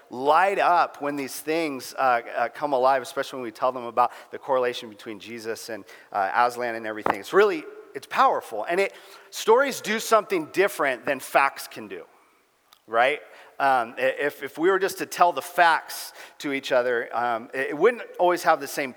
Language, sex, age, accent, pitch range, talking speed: English, male, 40-59, American, 130-175 Hz, 185 wpm